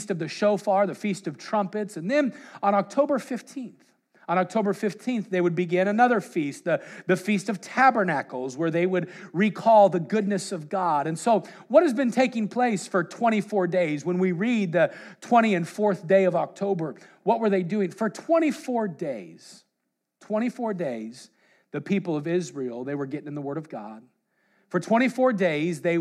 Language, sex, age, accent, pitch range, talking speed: English, male, 40-59, American, 160-210 Hz, 180 wpm